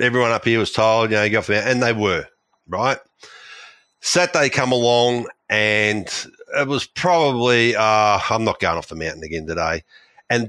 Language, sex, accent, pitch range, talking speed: English, male, Australian, 100-125 Hz, 165 wpm